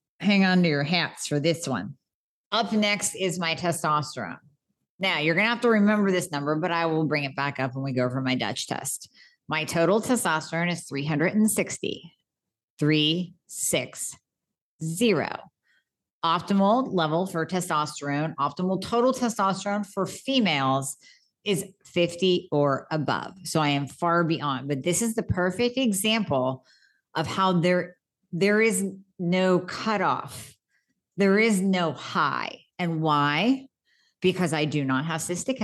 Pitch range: 150-195 Hz